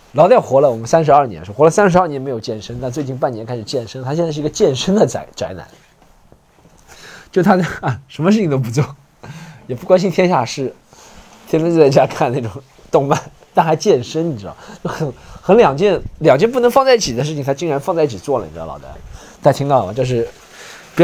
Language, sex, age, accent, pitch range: Chinese, male, 20-39, native, 115-170 Hz